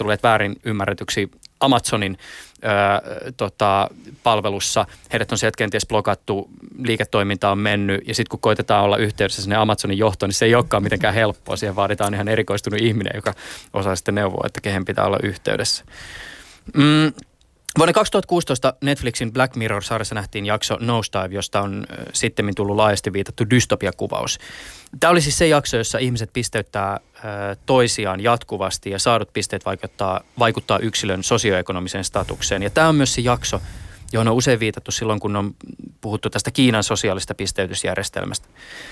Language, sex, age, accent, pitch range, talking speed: Finnish, male, 20-39, native, 100-130 Hz, 150 wpm